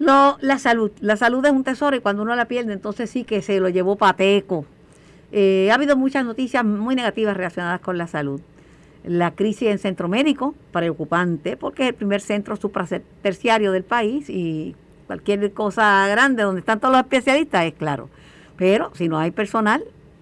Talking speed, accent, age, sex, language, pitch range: 180 wpm, American, 50-69, female, Spanish, 180-245 Hz